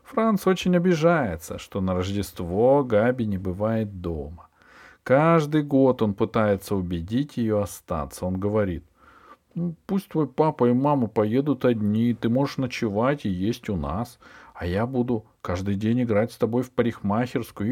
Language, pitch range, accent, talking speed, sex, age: Russian, 95-130 Hz, native, 150 wpm, male, 40-59